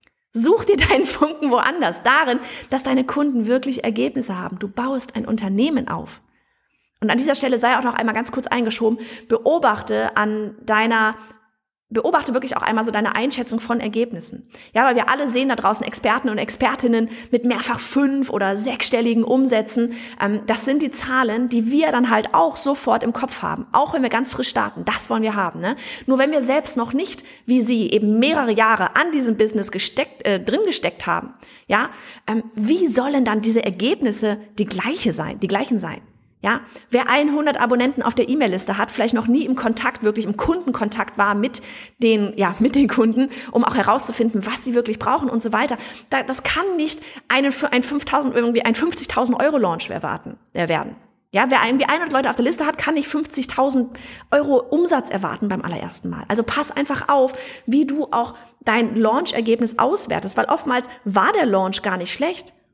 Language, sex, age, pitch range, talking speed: German, female, 30-49, 220-270 Hz, 185 wpm